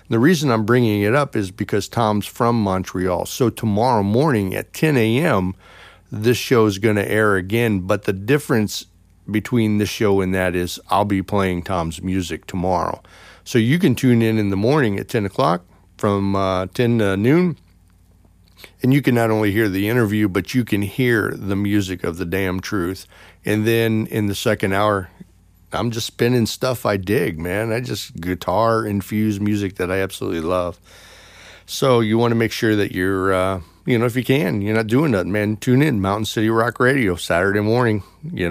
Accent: American